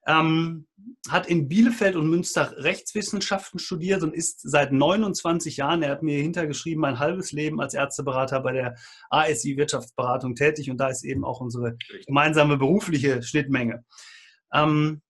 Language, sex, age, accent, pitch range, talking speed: German, male, 30-49, German, 145-175 Hz, 145 wpm